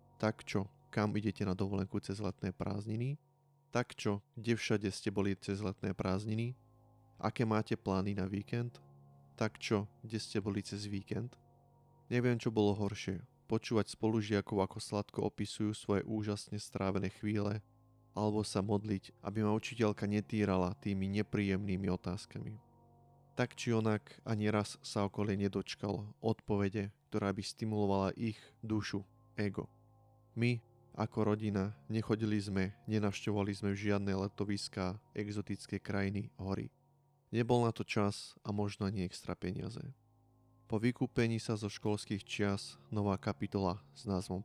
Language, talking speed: Slovak, 135 wpm